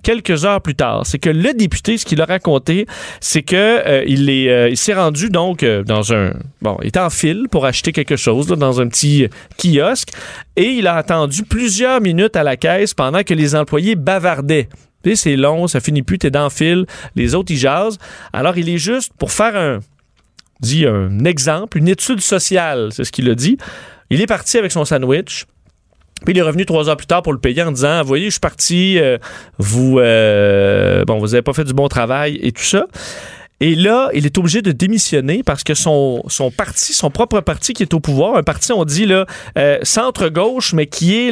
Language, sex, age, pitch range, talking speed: French, male, 40-59, 140-195 Hz, 220 wpm